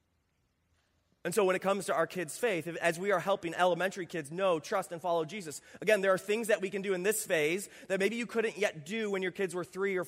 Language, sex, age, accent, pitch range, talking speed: English, male, 30-49, American, 170-205 Hz, 255 wpm